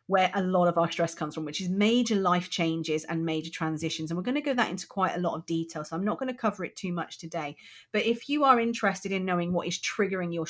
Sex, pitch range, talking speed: female, 160-195 Hz, 280 wpm